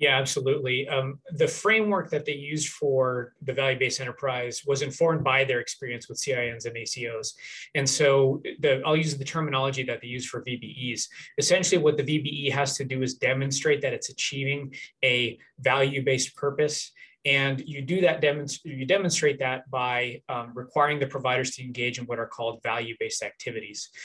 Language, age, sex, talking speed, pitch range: English, 20-39, male, 170 wpm, 130-150 Hz